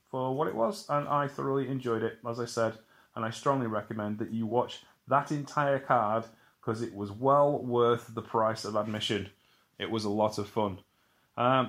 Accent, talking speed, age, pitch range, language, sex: British, 195 wpm, 30-49, 110-135 Hz, English, male